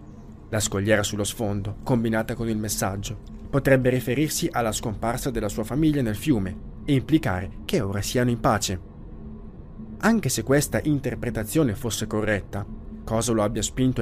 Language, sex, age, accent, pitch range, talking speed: Italian, male, 30-49, native, 105-130 Hz, 145 wpm